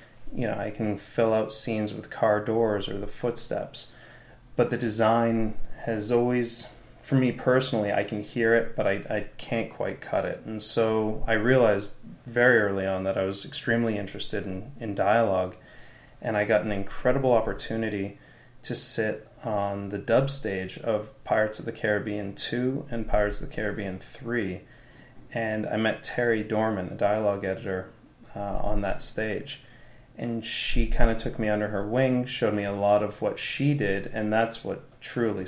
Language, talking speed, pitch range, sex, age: English, 175 wpm, 100-115 Hz, male, 30-49